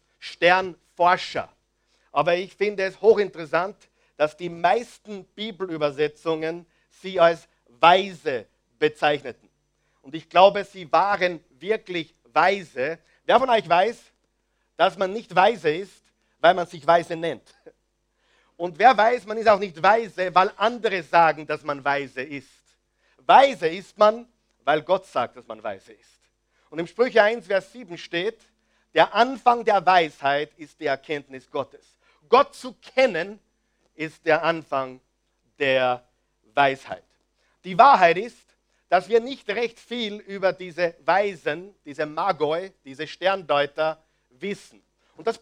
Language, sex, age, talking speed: German, male, 50-69, 135 wpm